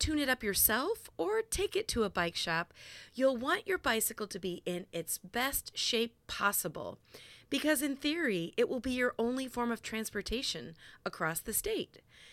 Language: English